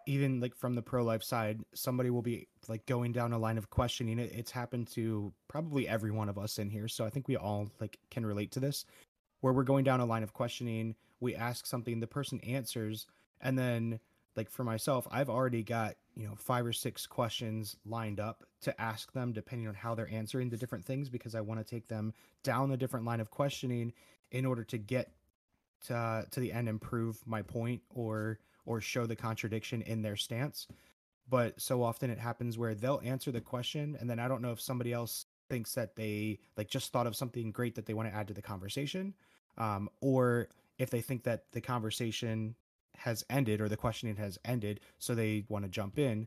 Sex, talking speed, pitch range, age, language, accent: male, 215 wpm, 110-125 Hz, 20-39, English, American